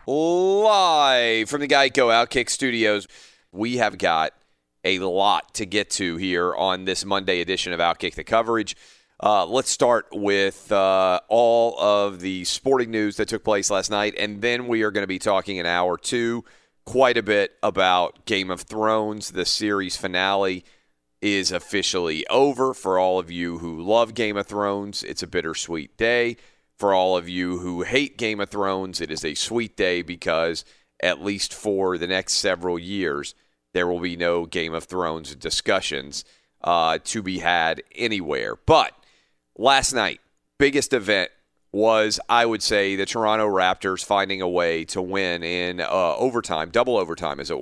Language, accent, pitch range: English, American, 90-110 Hz